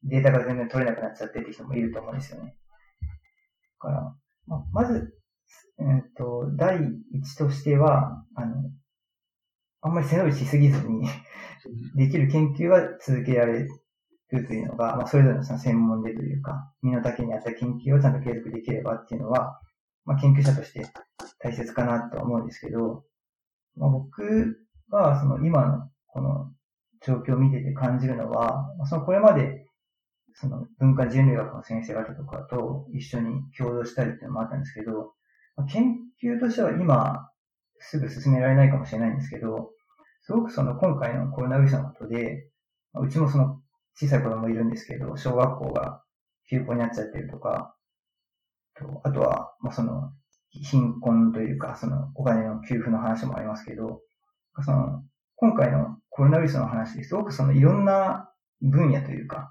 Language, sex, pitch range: Japanese, male, 115-145 Hz